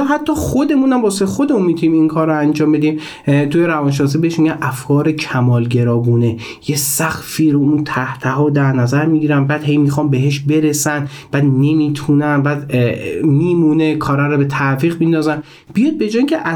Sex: male